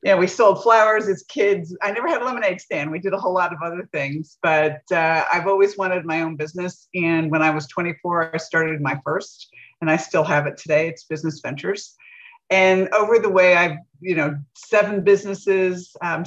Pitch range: 150-190 Hz